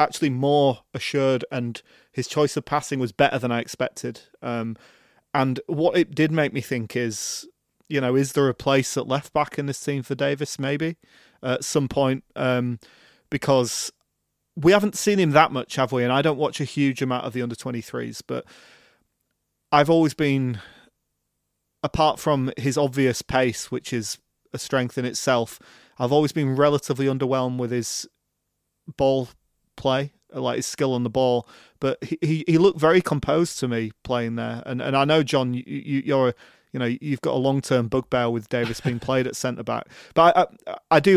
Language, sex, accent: English, male, British